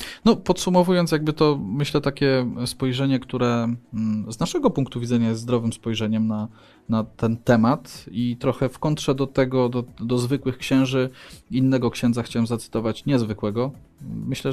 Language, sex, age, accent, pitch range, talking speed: Polish, male, 20-39, native, 110-130 Hz, 145 wpm